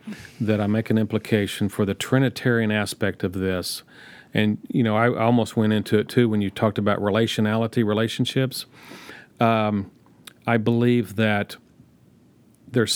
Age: 40-59